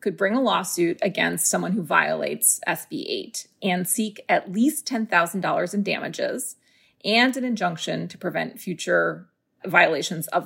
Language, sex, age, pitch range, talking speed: English, female, 30-49, 180-230 Hz, 145 wpm